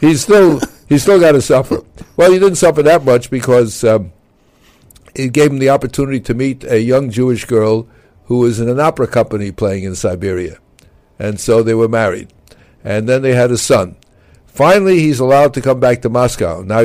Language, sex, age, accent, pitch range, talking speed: English, male, 60-79, American, 115-150 Hz, 190 wpm